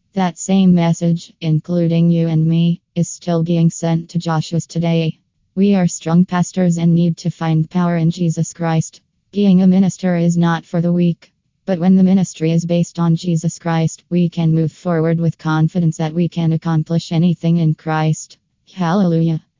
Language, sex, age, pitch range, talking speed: English, female, 20-39, 160-175 Hz, 175 wpm